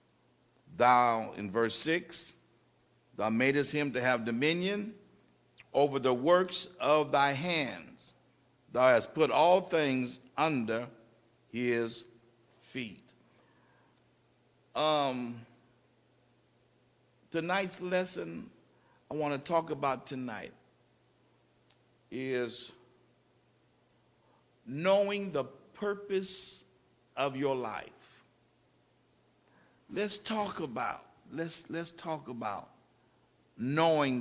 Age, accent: 60-79, American